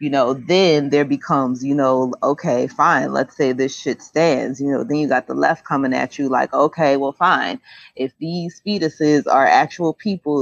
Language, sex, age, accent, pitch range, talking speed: English, female, 30-49, American, 130-160 Hz, 195 wpm